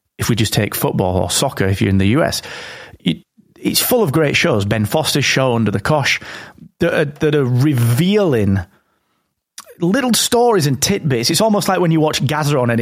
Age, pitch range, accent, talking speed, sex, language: 30-49, 110-150 Hz, British, 185 wpm, male, English